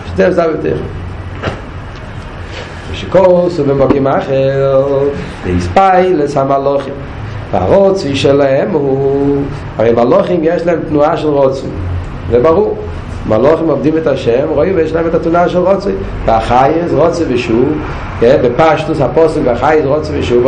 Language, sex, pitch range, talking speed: Hebrew, male, 110-155 Hz, 115 wpm